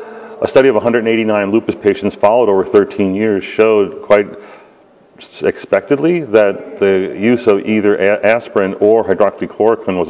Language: English